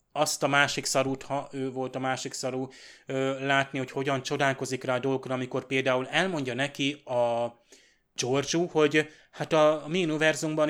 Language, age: Hungarian, 30-49